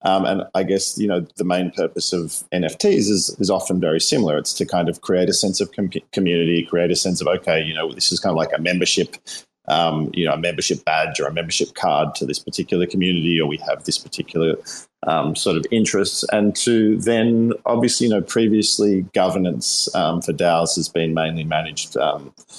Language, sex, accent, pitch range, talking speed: English, male, Australian, 80-95 Hz, 210 wpm